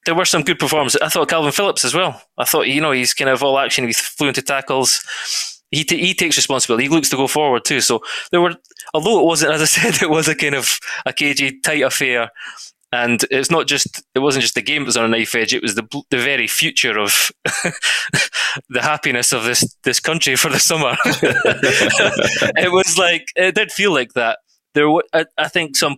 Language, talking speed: English, 225 wpm